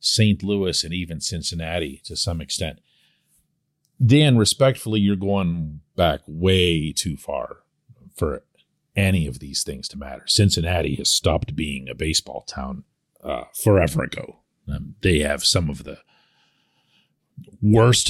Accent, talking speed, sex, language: American, 135 wpm, male, English